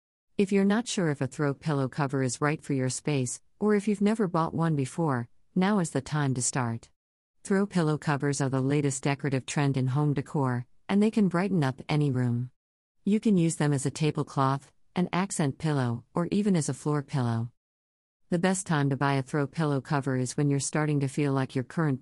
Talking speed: 215 wpm